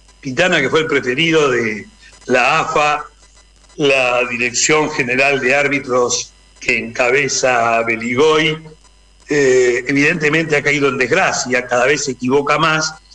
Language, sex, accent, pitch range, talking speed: Spanish, male, Argentinian, 140-195 Hz, 120 wpm